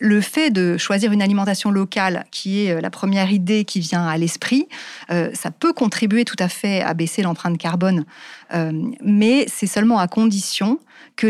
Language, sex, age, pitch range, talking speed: French, female, 40-59, 175-220 Hz, 175 wpm